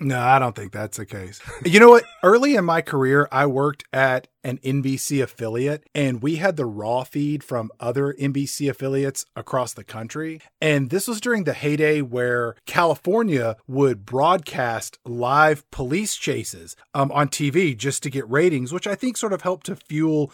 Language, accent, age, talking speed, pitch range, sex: English, American, 30-49, 180 wpm, 130-160 Hz, male